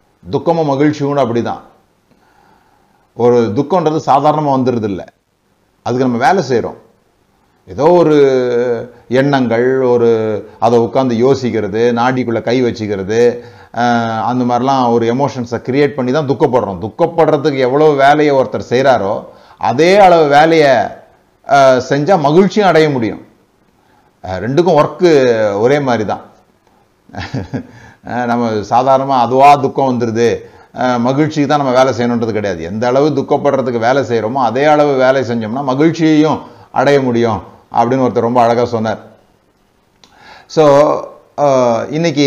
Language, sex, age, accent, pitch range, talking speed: Tamil, male, 30-49, native, 120-145 Hz, 100 wpm